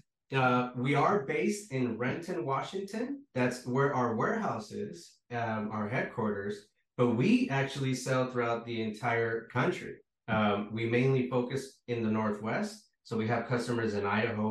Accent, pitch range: American, 115-135 Hz